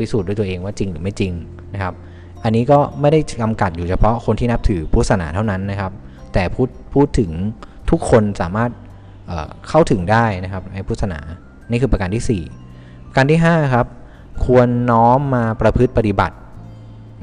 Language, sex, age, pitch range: Thai, male, 20-39, 90-120 Hz